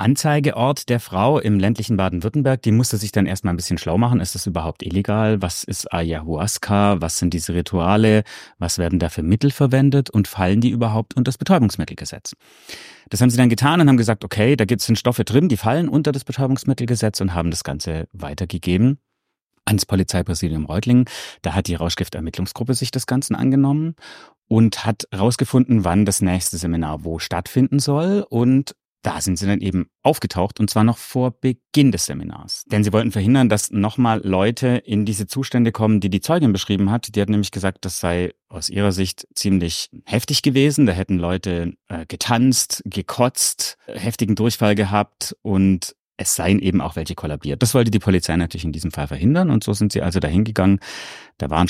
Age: 30-49